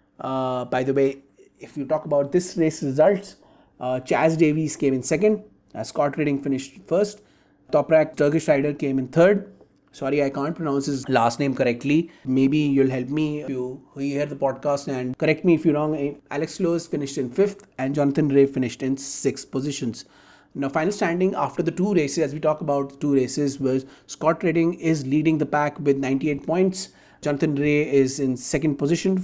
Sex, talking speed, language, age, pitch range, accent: male, 190 wpm, Hindi, 30-49, 135-170 Hz, native